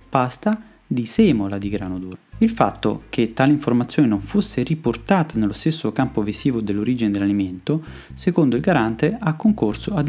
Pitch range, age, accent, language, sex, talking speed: 110-160 Hz, 30-49, native, Italian, male, 155 wpm